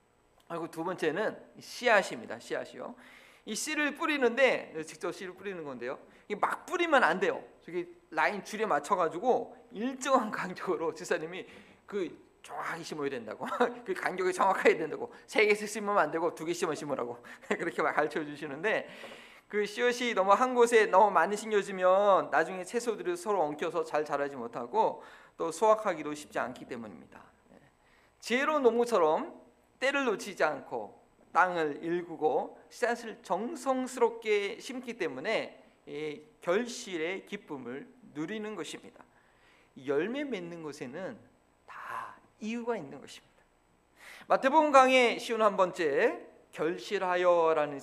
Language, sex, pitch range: Korean, male, 150-245 Hz